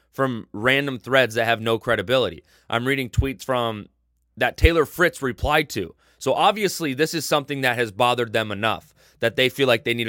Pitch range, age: 105-130 Hz, 20-39